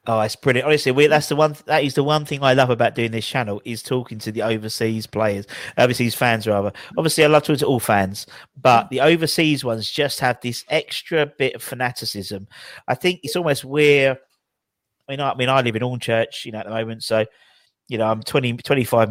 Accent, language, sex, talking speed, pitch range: British, English, male, 225 wpm, 115-145 Hz